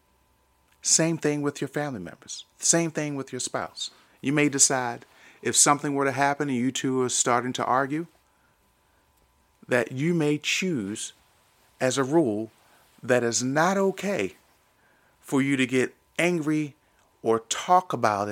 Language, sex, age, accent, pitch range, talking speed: English, male, 40-59, American, 95-130 Hz, 145 wpm